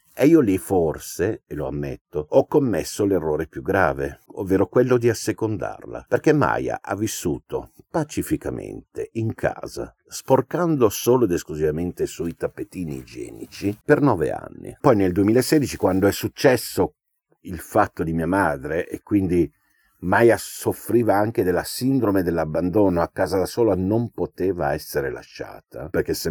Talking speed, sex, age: 140 wpm, male, 50-69